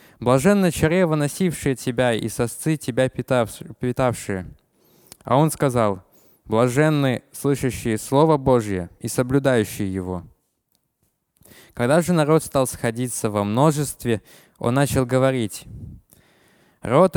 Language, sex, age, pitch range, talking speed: Russian, male, 20-39, 110-140 Hz, 100 wpm